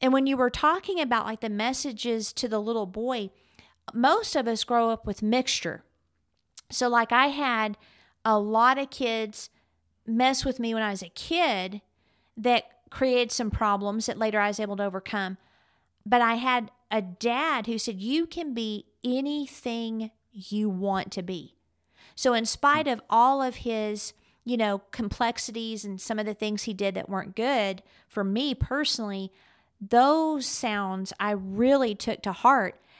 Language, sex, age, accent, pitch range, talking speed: English, female, 40-59, American, 205-250 Hz, 165 wpm